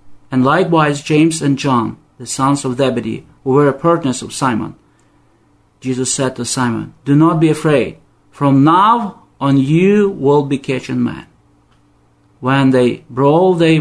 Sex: male